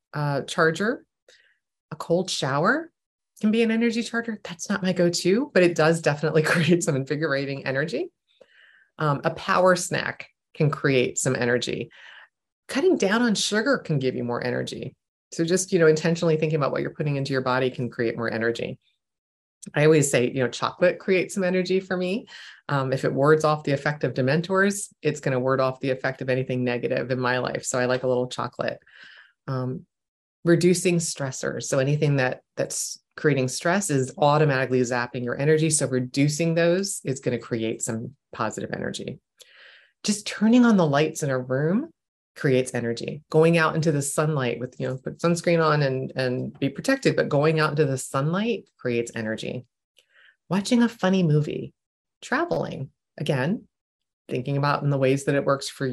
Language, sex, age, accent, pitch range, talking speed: English, female, 30-49, American, 130-180 Hz, 180 wpm